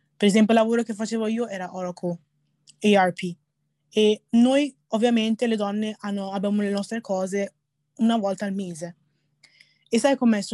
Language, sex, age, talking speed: Italian, female, 20-39, 160 wpm